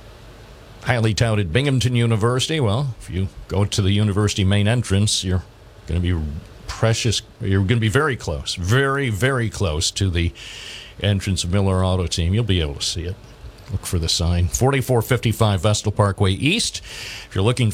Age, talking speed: 50-69, 175 wpm